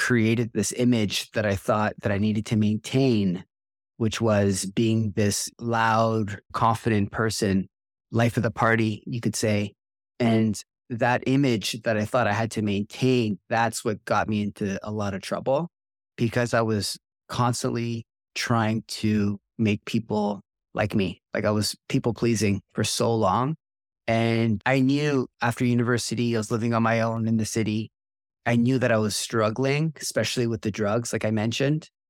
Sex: male